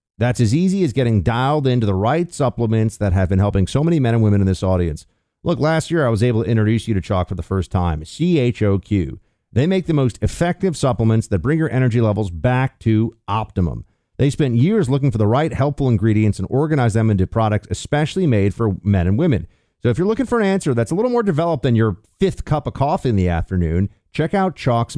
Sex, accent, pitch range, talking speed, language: male, American, 105-150 Hz, 230 wpm, English